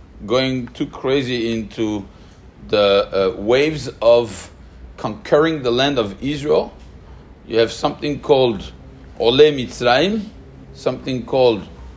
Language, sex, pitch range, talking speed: English, male, 95-150 Hz, 105 wpm